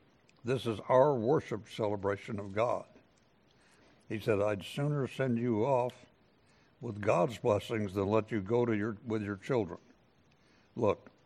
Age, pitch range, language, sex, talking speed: 60-79, 100-120 Hz, English, male, 145 wpm